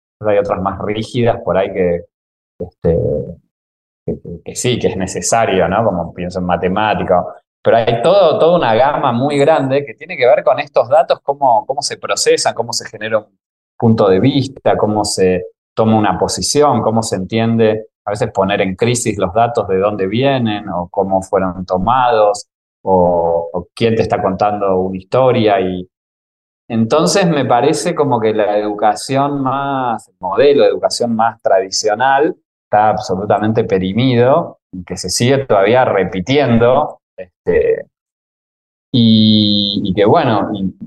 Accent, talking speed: Argentinian, 155 wpm